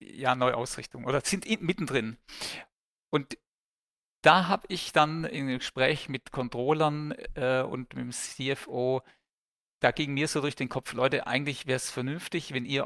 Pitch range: 130-160 Hz